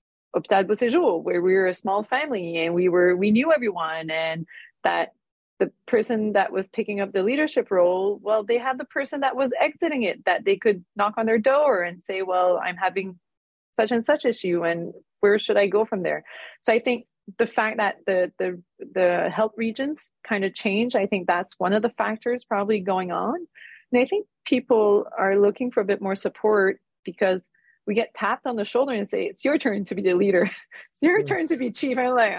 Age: 30-49